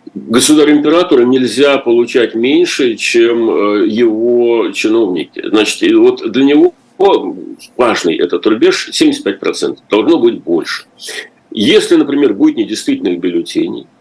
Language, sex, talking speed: Russian, male, 105 wpm